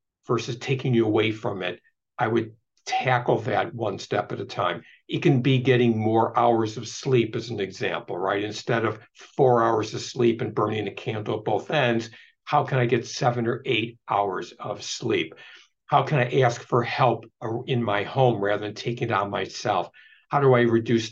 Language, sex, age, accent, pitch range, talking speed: English, male, 60-79, American, 110-130 Hz, 195 wpm